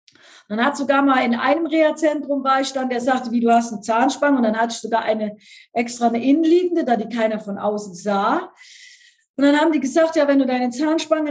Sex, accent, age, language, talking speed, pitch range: female, German, 40-59, German, 220 wpm, 230-310 Hz